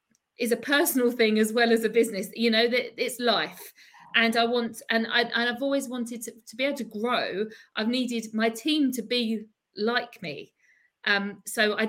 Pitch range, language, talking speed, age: 215-245 Hz, English, 200 wpm, 50-69